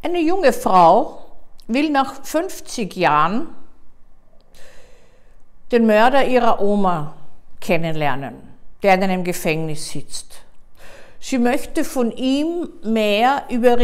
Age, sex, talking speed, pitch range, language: 50-69, female, 100 wpm, 195-255 Hz, German